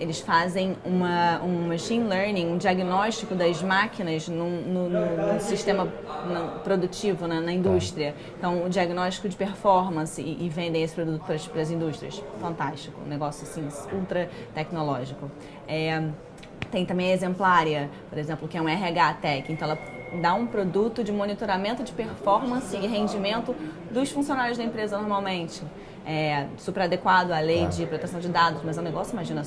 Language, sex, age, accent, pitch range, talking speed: Portuguese, female, 20-39, Brazilian, 155-185 Hz, 155 wpm